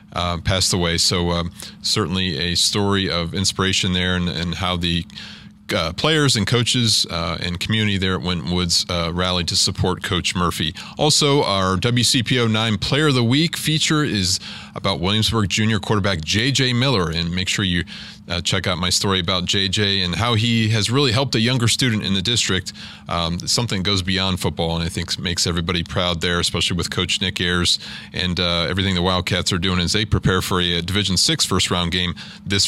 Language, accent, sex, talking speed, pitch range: English, American, male, 190 wpm, 90-120 Hz